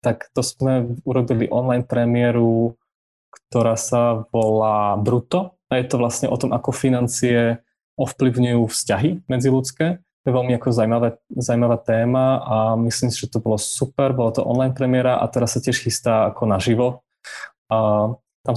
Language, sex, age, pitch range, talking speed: Slovak, male, 20-39, 120-130 Hz, 150 wpm